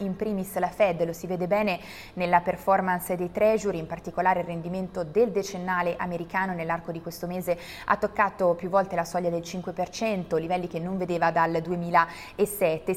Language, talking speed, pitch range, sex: Italian, 170 wpm, 175-210 Hz, female